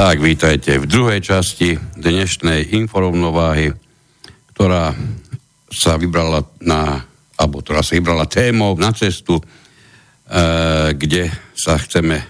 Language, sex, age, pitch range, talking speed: Slovak, male, 60-79, 75-95 Hz, 100 wpm